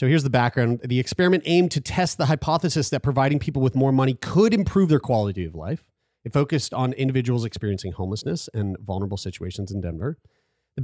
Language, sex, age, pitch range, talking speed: English, male, 30-49, 120-165 Hz, 195 wpm